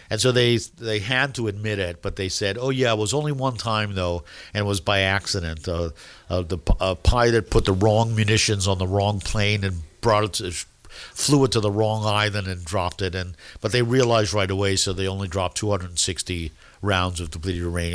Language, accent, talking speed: English, American, 215 wpm